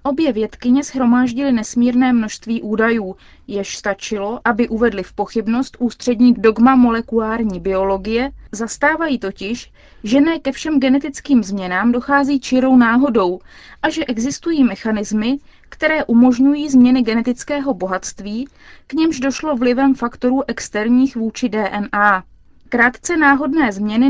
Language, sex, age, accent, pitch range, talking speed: Czech, female, 20-39, native, 215-275 Hz, 115 wpm